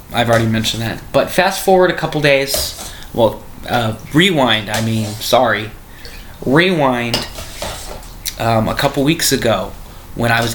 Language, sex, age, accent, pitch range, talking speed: English, male, 20-39, American, 115-135 Hz, 140 wpm